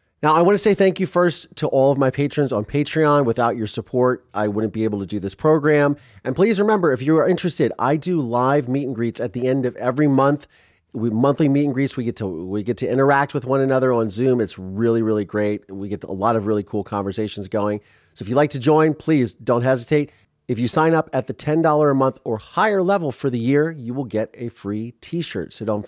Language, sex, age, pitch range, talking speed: English, male, 30-49, 110-155 Hz, 250 wpm